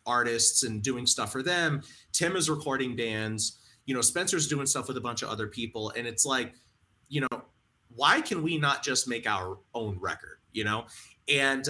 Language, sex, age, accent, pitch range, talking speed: English, male, 30-49, American, 110-140 Hz, 195 wpm